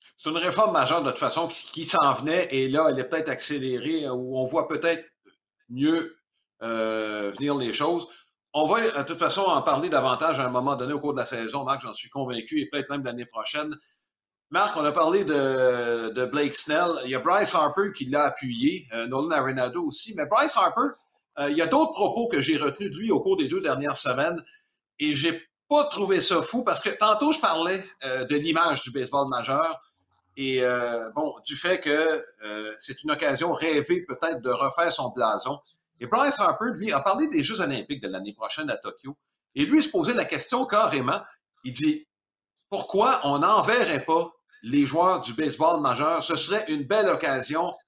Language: French